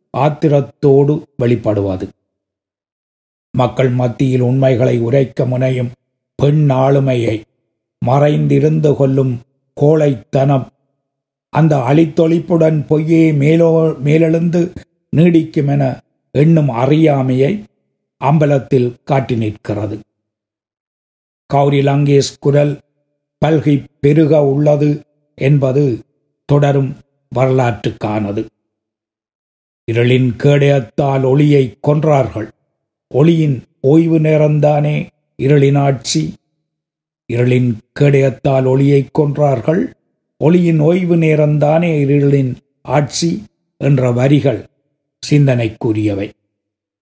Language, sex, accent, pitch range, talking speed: Tamil, male, native, 125-155 Hz, 65 wpm